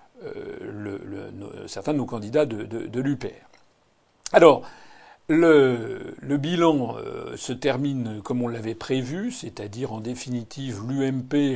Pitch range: 120-150 Hz